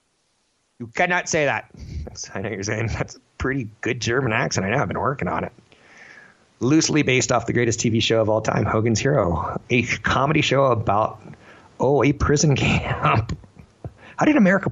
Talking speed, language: 180 wpm, English